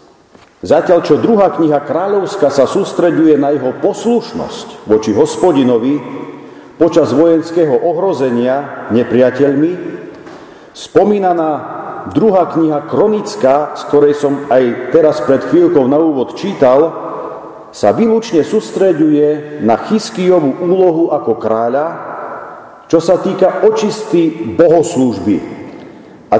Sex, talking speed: male, 100 wpm